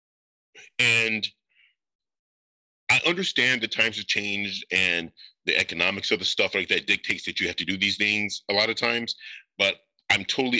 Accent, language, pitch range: American, English, 100-125 Hz